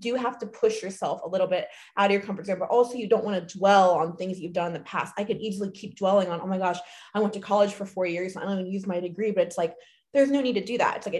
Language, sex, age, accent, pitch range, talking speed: English, female, 20-39, American, 185-245 Hz, 320 wpm